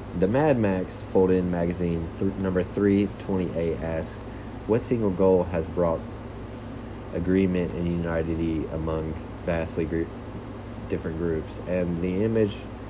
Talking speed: 120 wpm